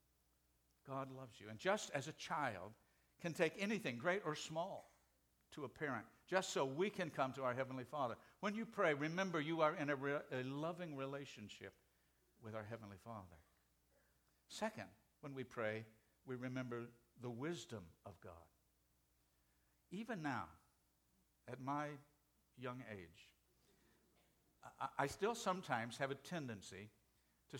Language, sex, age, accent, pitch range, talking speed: English, male, 60-79, American, 105-150 Hz, 140 wpm